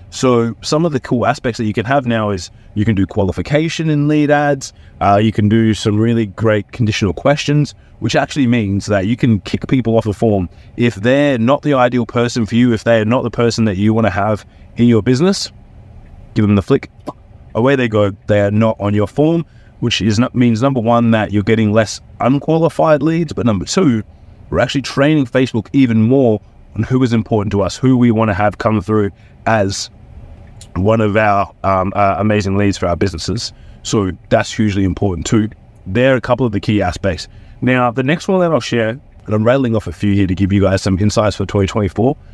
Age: 30-49